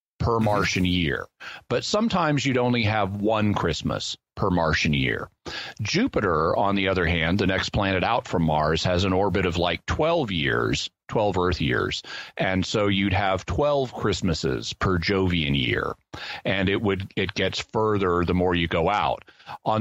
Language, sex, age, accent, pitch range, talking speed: English, male, 40-59, American, 90-115 Hz, 165 wpm